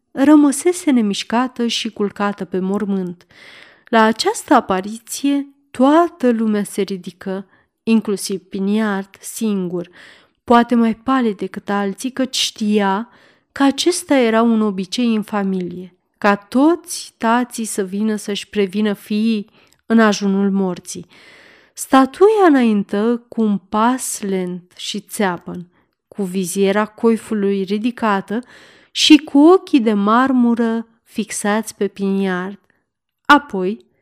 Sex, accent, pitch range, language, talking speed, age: female, native, 195-245 Hz, Romanian, 110 wpm, 30-49